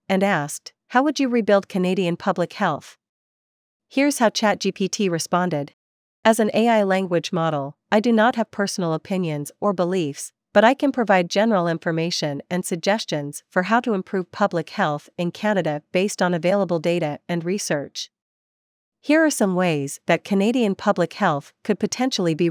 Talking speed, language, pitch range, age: 155 wpm, English, 160-205 Hz, 40-59